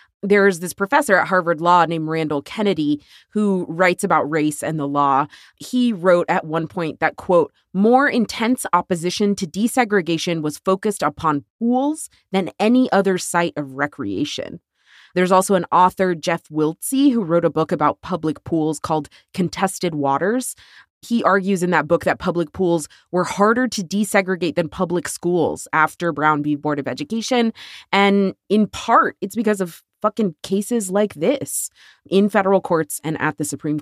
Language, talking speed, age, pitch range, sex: English, 165 wpm, 20-39, 155-205 Hz, female